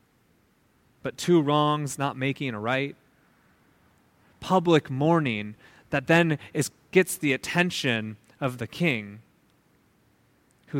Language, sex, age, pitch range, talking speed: English, male, 20-39, 140-180 Hz, 100 wpm